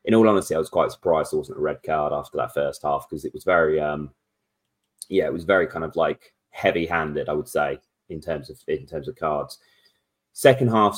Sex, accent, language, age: male, British, English, 20-39